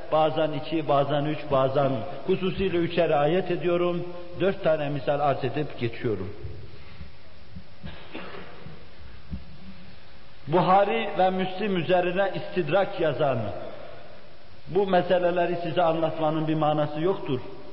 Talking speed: 95 wpm